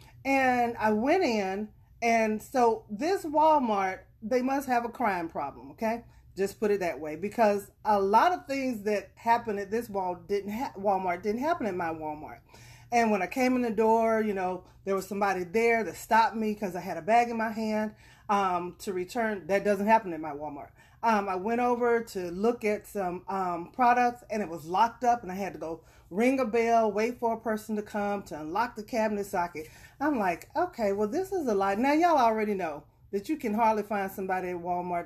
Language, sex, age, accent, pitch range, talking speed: English, female, 30-49, American, 185-240 Hz, 215 wpm